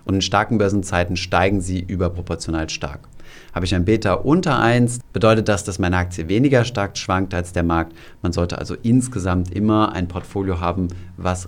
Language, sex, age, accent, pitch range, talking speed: German, male, 30-49, German, 90-105 Hz, 180 wpm